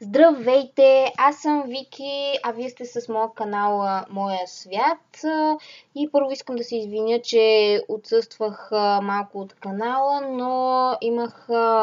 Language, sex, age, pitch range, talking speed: Bulgarian, female, 20-39, 205-260 Hz, 125 wpm